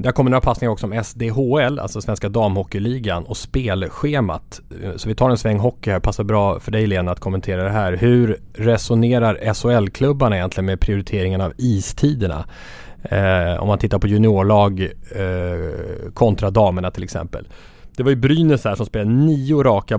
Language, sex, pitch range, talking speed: English, male, 95-115 Hz, 170 wpm